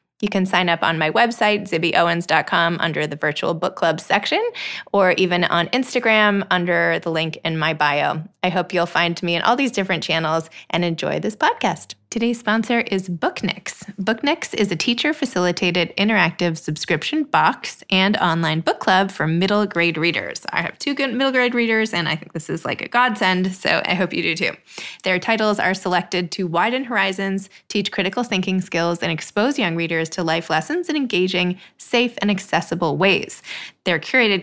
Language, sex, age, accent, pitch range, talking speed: English, female, 20-39, American, 170-210 Hz, 185 wpm